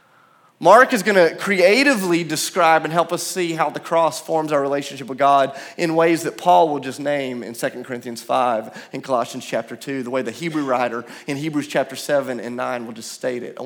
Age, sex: 30-49, male